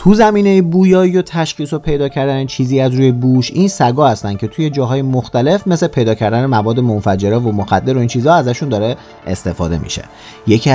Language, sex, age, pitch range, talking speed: Persian, male, 30-49, 95-145 Hz, 190 wpm